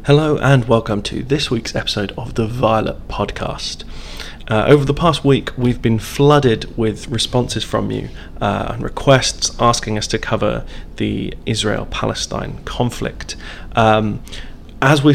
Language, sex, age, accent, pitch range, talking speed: English, male, 30-49, British, 110-130 Hz, 145 wpm